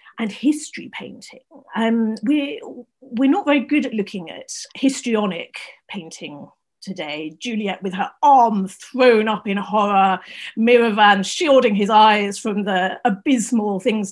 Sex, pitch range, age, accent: female, 195-250 Hz, 40-59, British